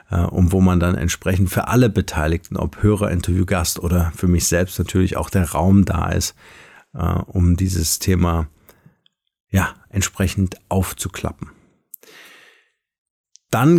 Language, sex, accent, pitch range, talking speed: German, male, German, 95-115 Hz, 120 wpm